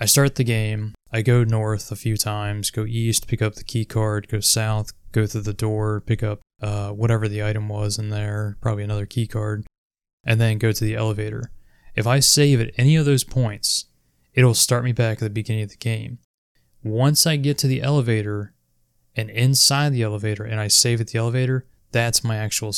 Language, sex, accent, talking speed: English, male, American, 210 wpm